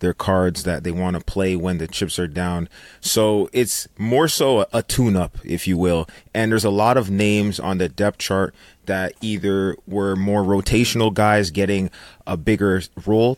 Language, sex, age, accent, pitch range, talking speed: English, male, 30-49, American, 95-105 Hz, 185 wpm